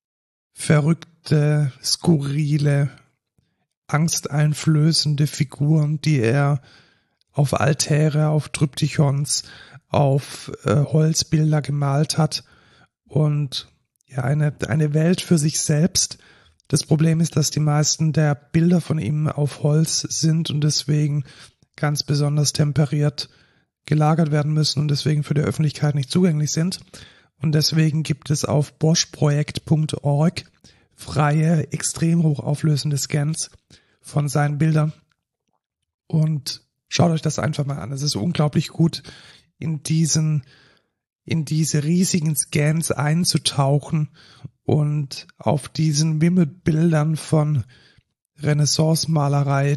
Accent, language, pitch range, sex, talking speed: German, German, 140-155 Hz, male, 105 wpm